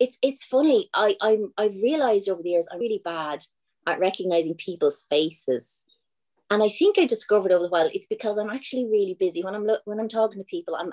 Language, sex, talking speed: English, female, 220 wpm